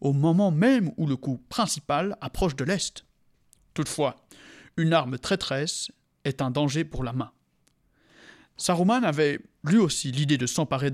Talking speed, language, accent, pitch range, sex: 150 wpm, French, French, 135-180 Hz, male